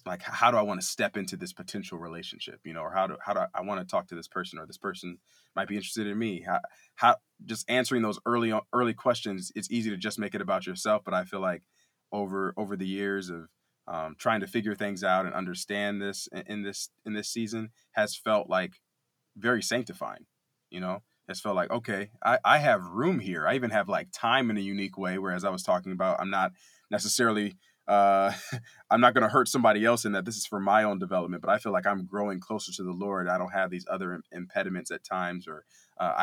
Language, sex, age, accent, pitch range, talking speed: English, male, 20-39, American, 95-110 Hz, 235 wpm